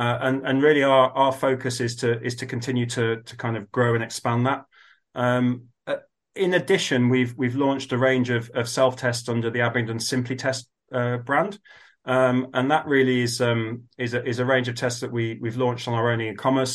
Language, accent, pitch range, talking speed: English, British, 115-130 Hz, 220 wpm